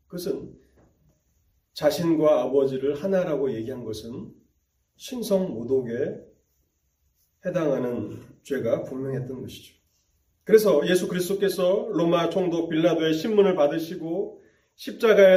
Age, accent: 40-59, native